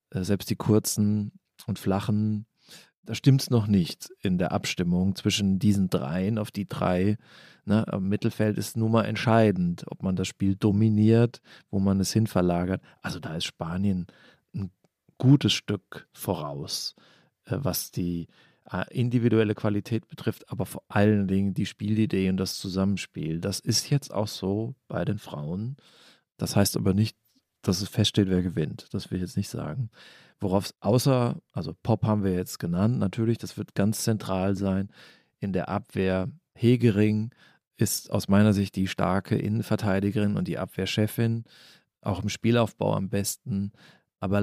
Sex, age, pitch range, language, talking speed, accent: male, 40-59, 95-115 Hz, German, 155 wpm, German